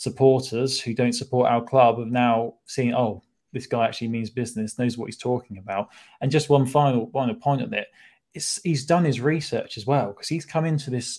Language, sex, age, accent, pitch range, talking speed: English, male, 20-39, British, 110-135 Hz, 215 wpm